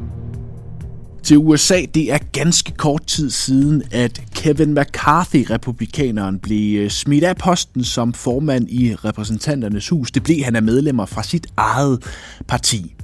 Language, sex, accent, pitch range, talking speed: Danish, male, native, 105-150 Hz, 135 wpm